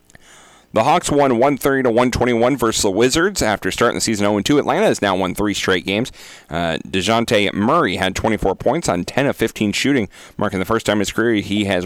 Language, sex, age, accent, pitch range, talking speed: English, male, 40-59, American, 95-120 Hz, 195 wpm